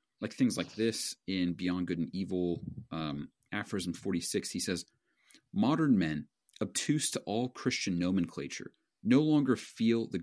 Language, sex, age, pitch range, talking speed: English, male, 40-59, 90-115 Hz, 145 wpm